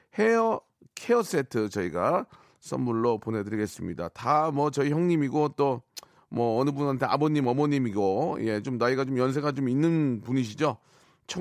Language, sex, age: Korean, male, 40-59